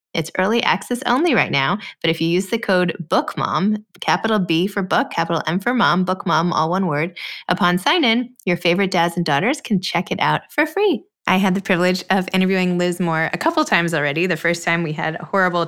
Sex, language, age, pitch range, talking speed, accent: female, English, 20-39, 165-200 Hz, 220 wpm, American